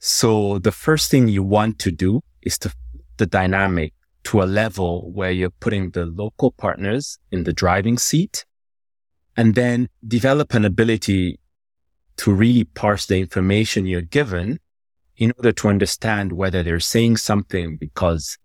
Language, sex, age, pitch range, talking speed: English, male, 30-49, 85-110 Hz, 150 wpm